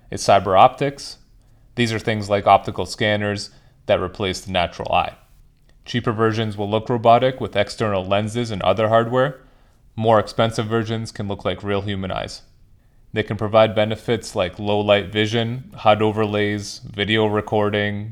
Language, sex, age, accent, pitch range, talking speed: English, male, 30-49, American, 100-115 Hz, 150 wpm